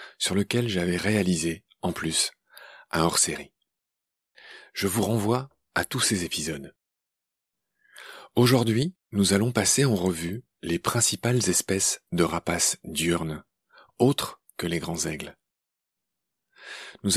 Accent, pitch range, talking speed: French, 85-115 Hz, 115 wpm